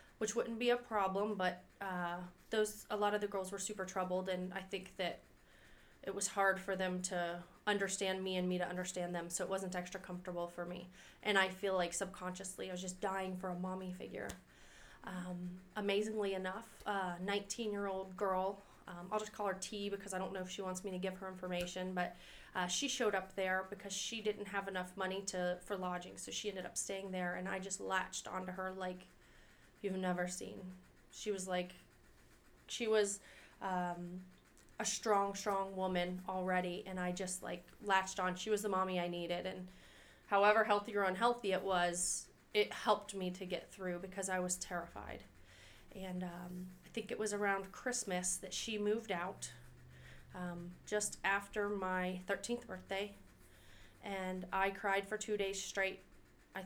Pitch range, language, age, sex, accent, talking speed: 180-200 Hz, English, 30-49, female, American, 185 wpm